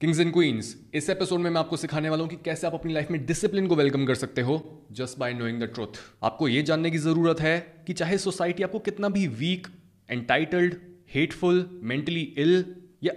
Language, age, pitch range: Hindi, 20-39, 145-200 Hz